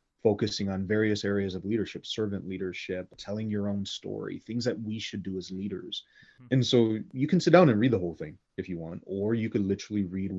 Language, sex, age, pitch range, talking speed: English, male, 30-49, 95-110 Hz, 220 wpm